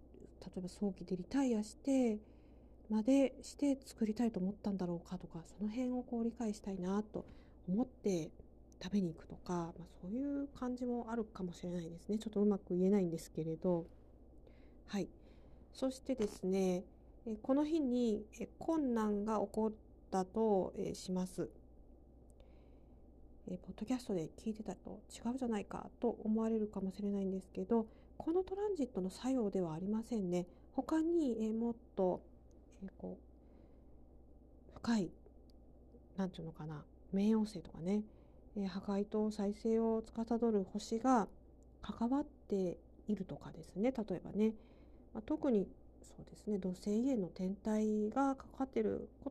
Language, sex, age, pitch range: Japanese, female, 40-59, 185-240 Hz